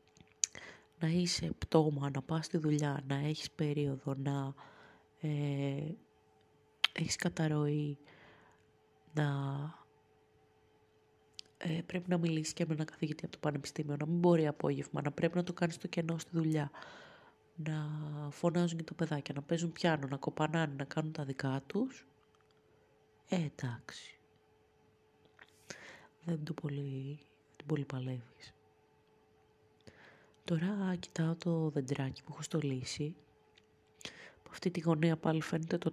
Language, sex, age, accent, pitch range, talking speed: Greek, female, 30-49, native, 145-175 Hz, 125 wpm